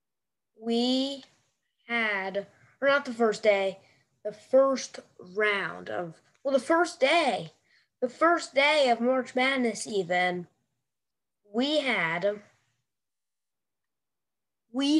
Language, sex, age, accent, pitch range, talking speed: English, female, 20-39, American, 225-285 Hz, 100 wpm